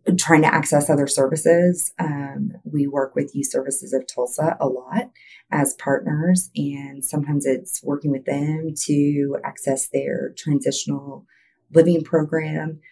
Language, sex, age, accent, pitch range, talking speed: English, female, 30-49, American, 135-160 Hz, 135 wpm